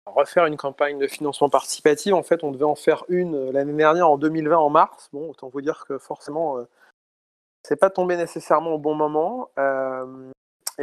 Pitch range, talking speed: 135-165 Hz, 190 wpm